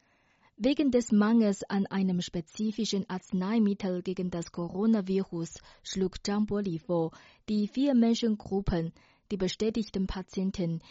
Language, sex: German, female